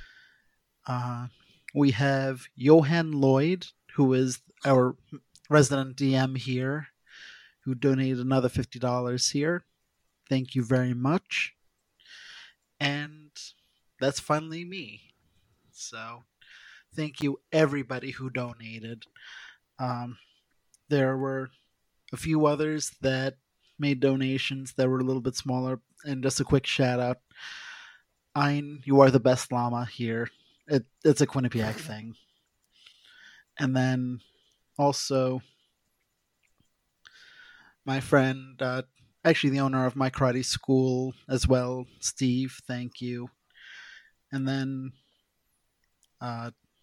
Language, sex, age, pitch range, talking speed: English, male, 30-49, 125-140 Hz, 110 wpm